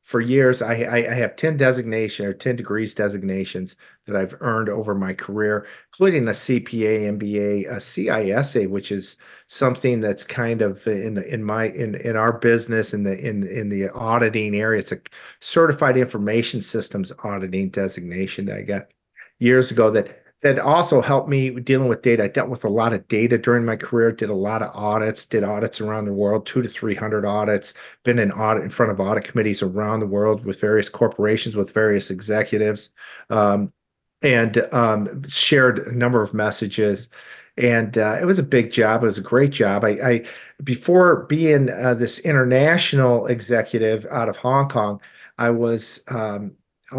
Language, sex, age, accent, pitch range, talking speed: English, male, 50-69, American, 105-120 Hz, 180 wpm